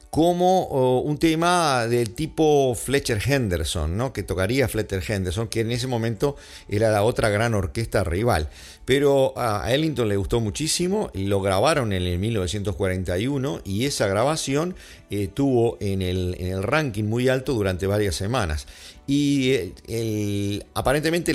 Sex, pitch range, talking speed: male, 95-130 Hz, 130 wpm